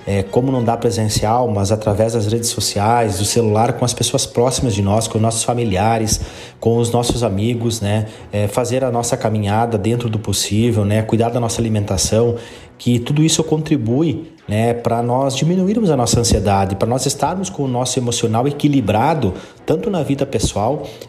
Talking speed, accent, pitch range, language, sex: 175 wpm, Brazilian, 110-135 Hz, Portuguese, male